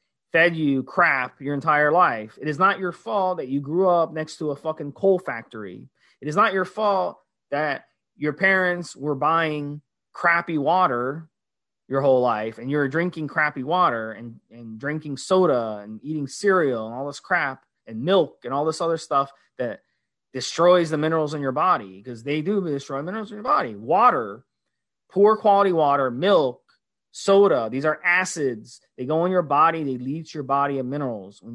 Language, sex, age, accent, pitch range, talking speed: English, male, 30-49, American, 125-170 Hz, 180 wpm